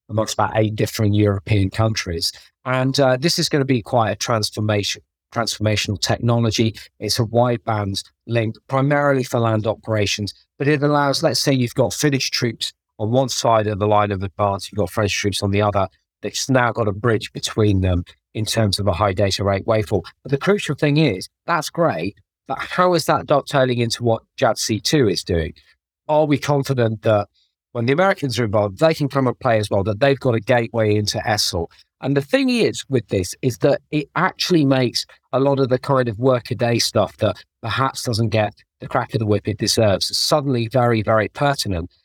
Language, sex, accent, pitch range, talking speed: English, male, British, 105-135 Hz, 200 wpm